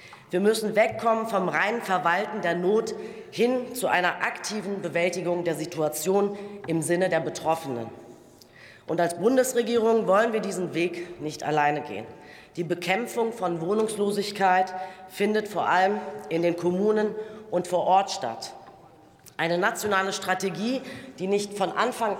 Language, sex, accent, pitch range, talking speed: German, female, German, 170-205 Hz, 135 wpm